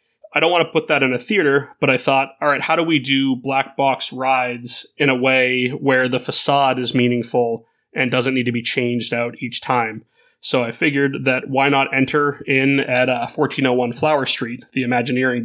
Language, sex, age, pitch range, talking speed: English, male, 30-49, 120-140 Hz, 205 wpm